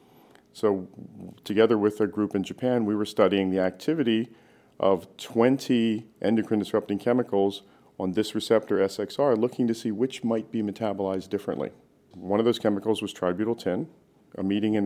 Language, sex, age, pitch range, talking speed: English, male, 40-59, 95-110 Hz, 150 wpm